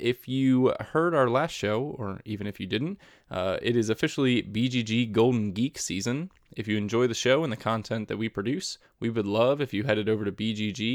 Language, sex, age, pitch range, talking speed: English, male, 20-39, 105-130 Hz, 215 wpm